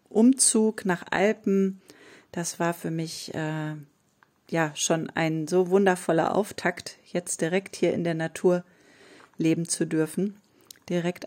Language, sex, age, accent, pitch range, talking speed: German, female, 30-49, German, 165-190 Hz, 130 wpm